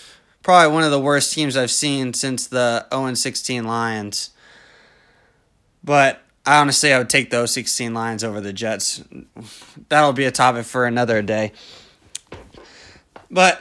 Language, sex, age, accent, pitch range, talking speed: English, male, 20-39, American, 135-165 Hz, 145 wpm